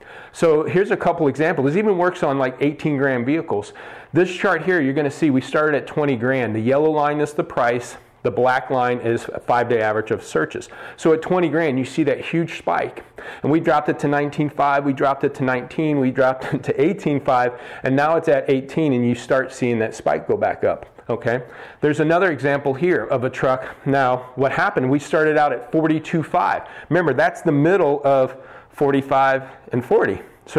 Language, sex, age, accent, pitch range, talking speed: English, male, 40-59, American, 130-155 Hz, 205 wpm